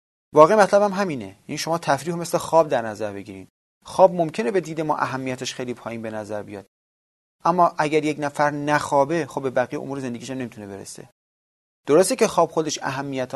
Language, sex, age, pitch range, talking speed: Persian, male, 30-49, 115-160 Hz, 185 wpm